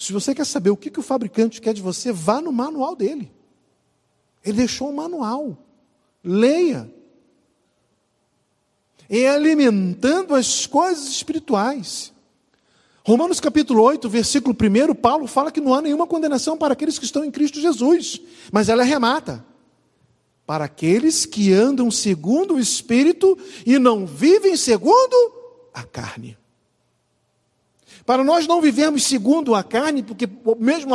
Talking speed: 135 wpm